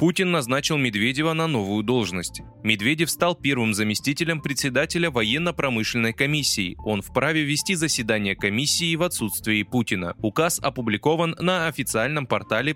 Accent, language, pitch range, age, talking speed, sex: native, Russian, 110-155 Hz, 20-39, 120 wpm, male